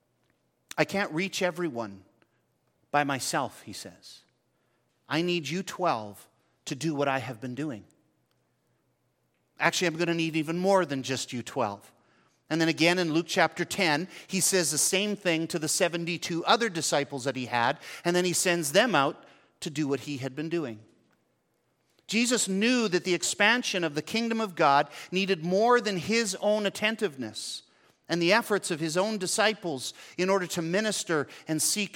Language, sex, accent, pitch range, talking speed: English, male, American, 145-195 Hz, 175 wpm